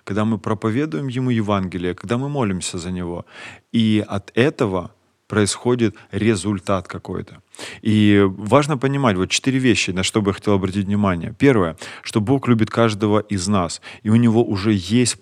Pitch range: 95-115 Hz